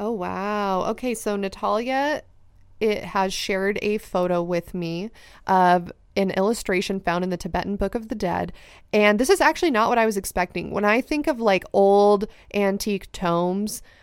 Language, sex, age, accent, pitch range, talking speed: English, female, 20-39, American, 180-210 Hz, 170 wpm